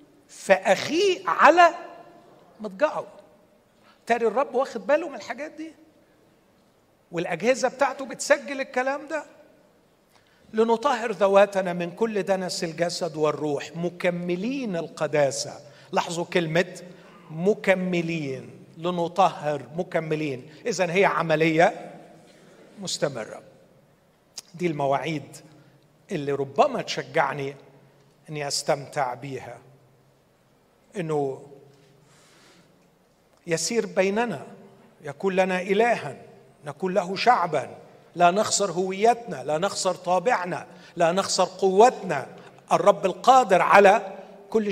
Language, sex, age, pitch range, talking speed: Arabic, male, 50-69, 165-230 Hz, 85 wpm